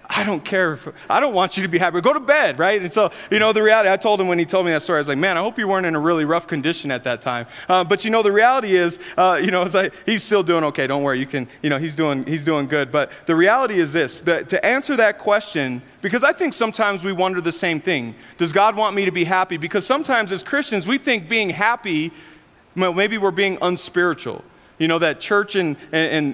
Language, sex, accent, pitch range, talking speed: English, male, American, 150-200 Hz, 260 wpm